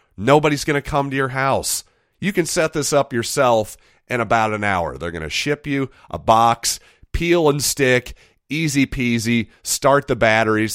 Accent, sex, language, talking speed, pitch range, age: American, male, English, 180 wpm, 100-135 Hz, 40-59